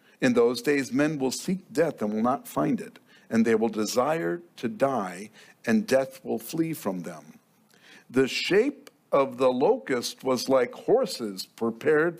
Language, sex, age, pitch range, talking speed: English, male, 50-69, 120-170 Hz, 160 wpm